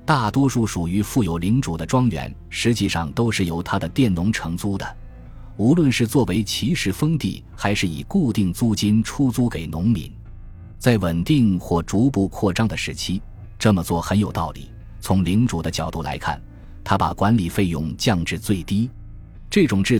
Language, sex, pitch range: Chinese, male, 85-115 Hz